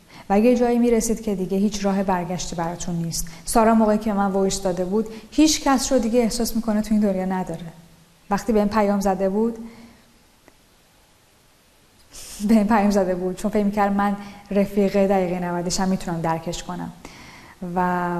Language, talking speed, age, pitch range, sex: Persian, 165 wpm, 10-29, 175-220 Hz, female